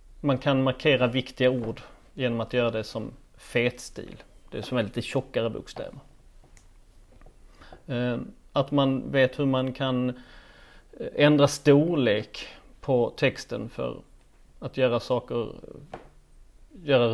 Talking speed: 115 wpm